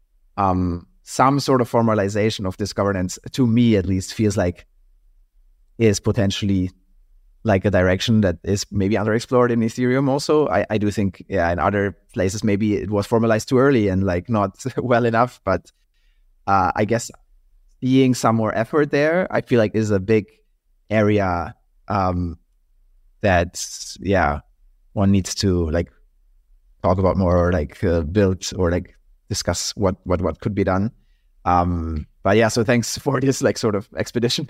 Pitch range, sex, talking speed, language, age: 90-115 Hz, male, 165 wpm, English, 30-49